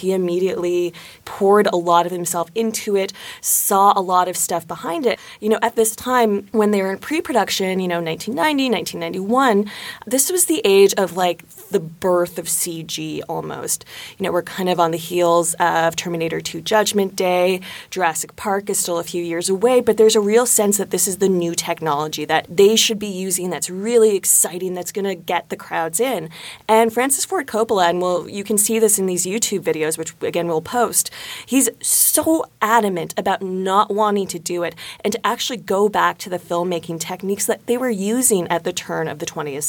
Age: 20-39